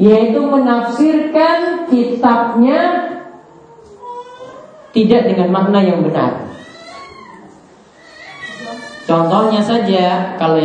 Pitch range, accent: 170-235 Hz, native